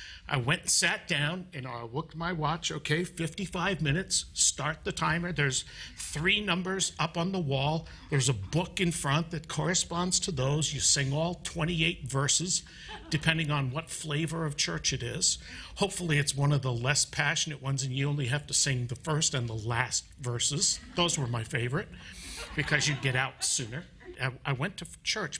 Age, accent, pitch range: 60-79, American, 120-160 Hz